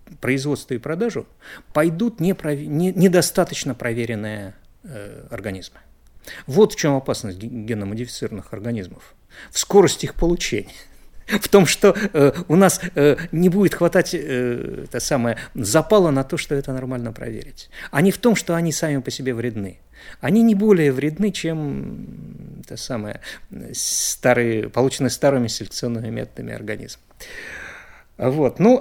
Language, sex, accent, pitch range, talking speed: Russian, male, native, 110-160 Hz, 125 wpm